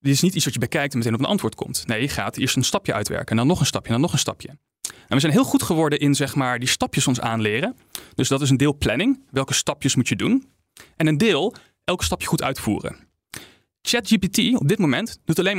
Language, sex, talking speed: Dutch, male, 260 wpm